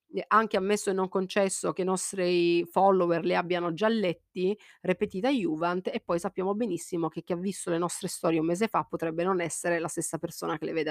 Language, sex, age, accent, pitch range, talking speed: Italian, female, 30-49, native, 170-215 Hz, 210 wpm